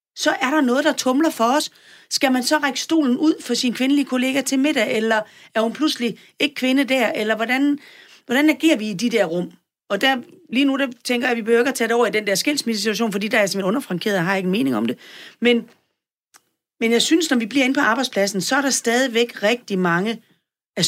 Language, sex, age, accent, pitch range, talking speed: Danish, female, 40-59, native, 200-260 Hz, 240 wpm